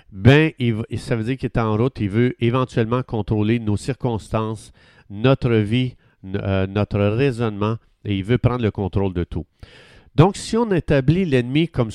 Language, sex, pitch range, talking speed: French, male, 105-140 Hz, 160 wpm